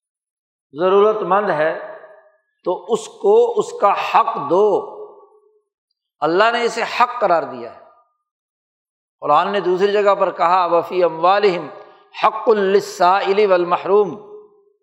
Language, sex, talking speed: Urdu, male, 115 wpm